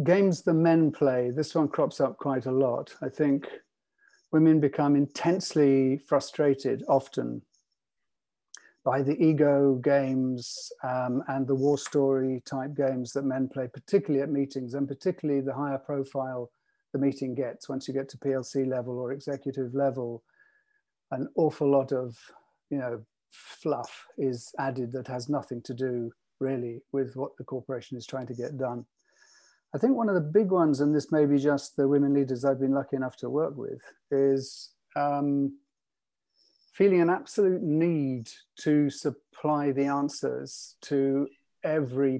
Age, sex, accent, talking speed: 50-69, male, British, 155 wpm